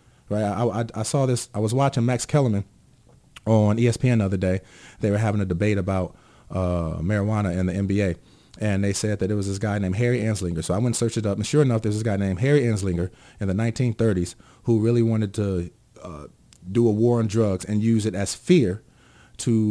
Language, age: English, 30-49